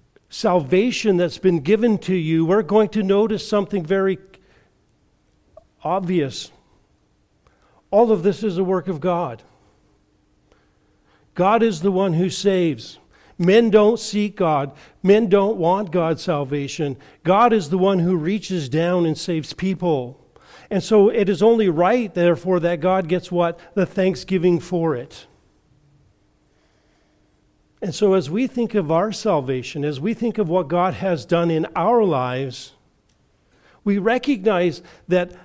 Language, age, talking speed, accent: English, 50-69, 140 wpm, American